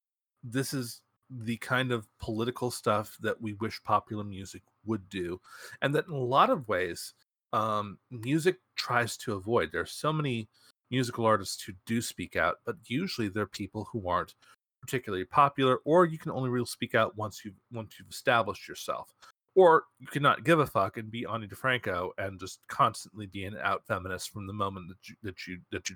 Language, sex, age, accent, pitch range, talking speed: English, male, 30-49, American, 100-125 Hz, 190 wpm